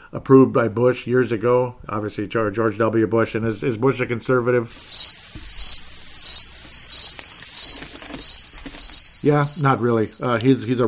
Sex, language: male, English